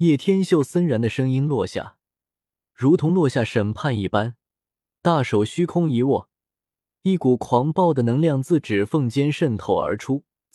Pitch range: 115-170 Hz